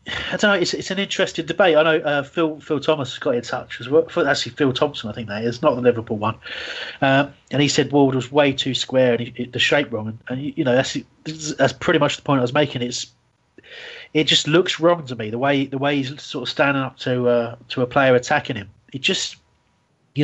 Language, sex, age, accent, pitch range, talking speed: English, male, 30-49, British, 125-155 Hz, 245 wpm